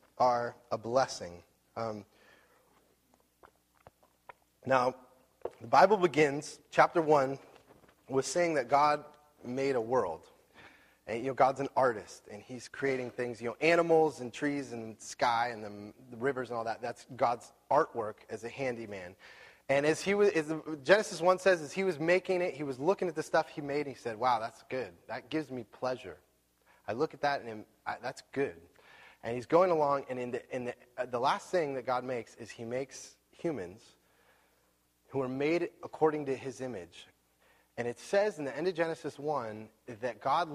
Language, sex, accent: English, male, American